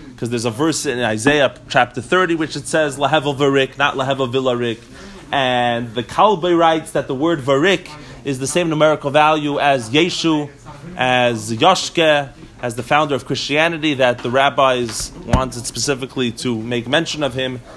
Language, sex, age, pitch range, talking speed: English, male, 30-49, 125-155 Hz, 150 wpm